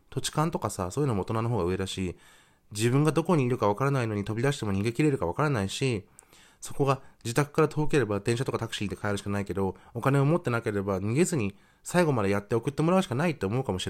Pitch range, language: 95-140 Hz, Japanese